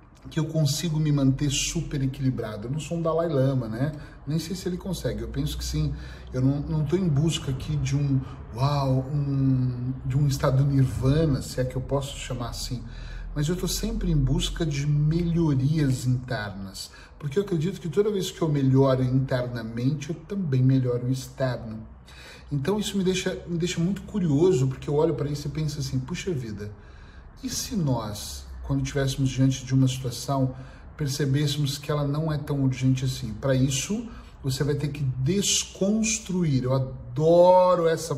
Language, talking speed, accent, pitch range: Portuguese, 180 wpm, Brazilian, 130-155 Hz